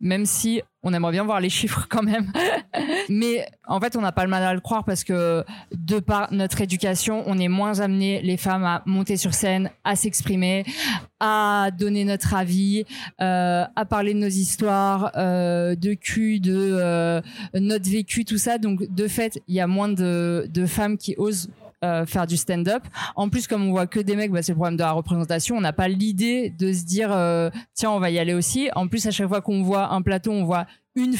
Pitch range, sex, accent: 180-215 Hz, female, French